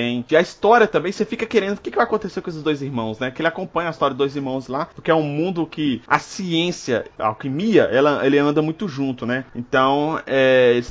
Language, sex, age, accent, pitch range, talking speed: Portuguese, male, 20-39, Brazilian, 140-190 Hz, 235 wpm